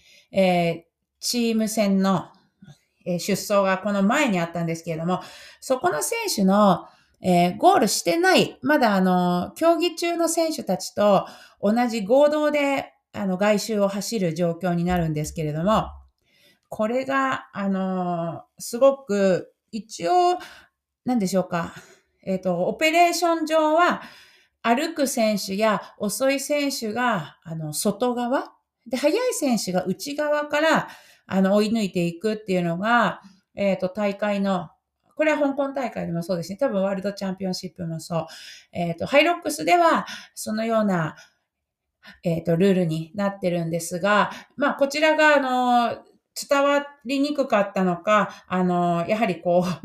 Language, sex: Japanese, female